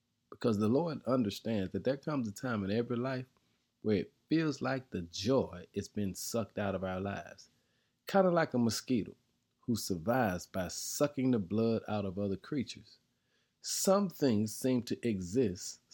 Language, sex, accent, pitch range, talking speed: English, male, American, 100-135 Hz, 170 wpm